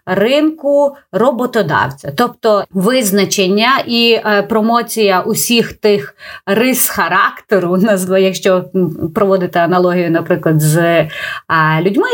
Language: Ukrainian